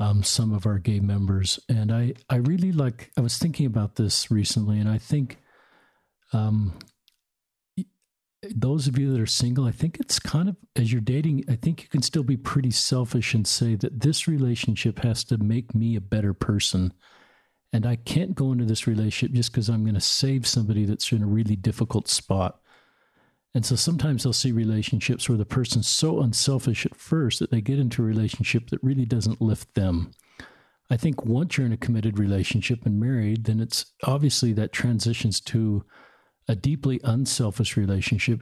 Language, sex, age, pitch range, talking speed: English, male, 50-69, 110-130 Hz, 185 wpm